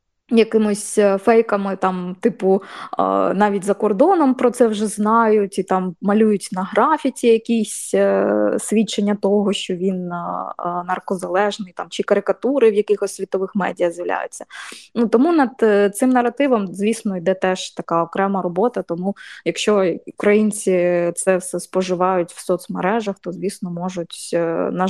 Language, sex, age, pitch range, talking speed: Ukrainian, female, 20-39, 185-220 Hz, 130 wpm